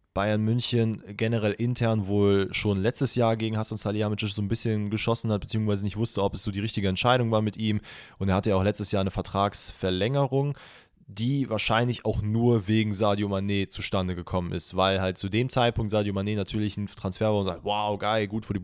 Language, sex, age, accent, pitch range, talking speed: German, male, 20-39, German, 105-125 Hz, 210 wpm